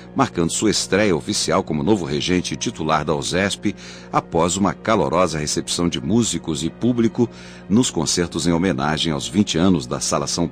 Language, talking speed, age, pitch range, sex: Portuguese, 165 wpm, 60-79, 75-105 Hz, male